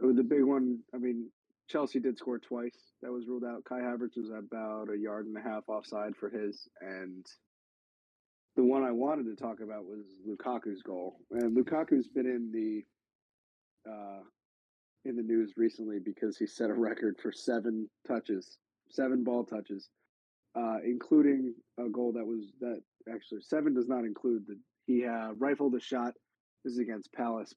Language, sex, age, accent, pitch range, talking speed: English, male, 30-49, American, 110-125 Hz, 170 wpm